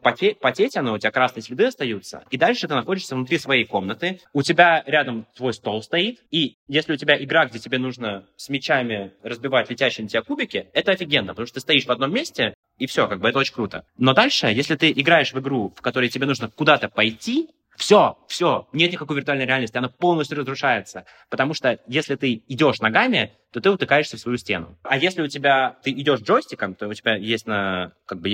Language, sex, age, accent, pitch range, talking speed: Russian, male, 20-39, native, 110-145 Hz, 210 wpm